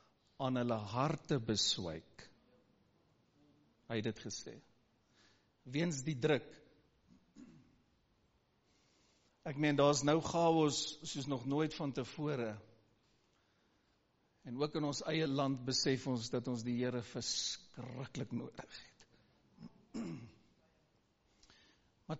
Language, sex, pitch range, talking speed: English, male, 120-155 Hz, 105 wpm